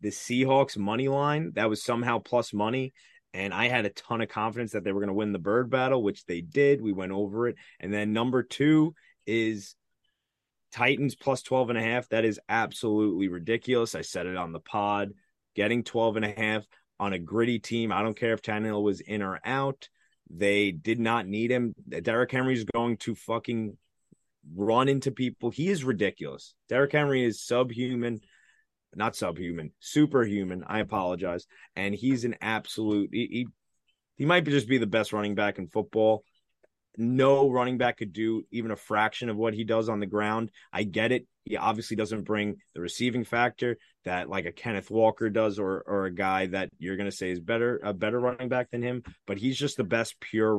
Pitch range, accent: 105-125 Hz, American